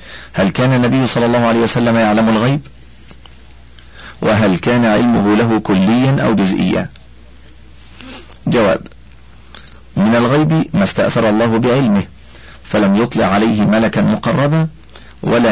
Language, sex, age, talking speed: Arabic, male, 50-69, 110 wpm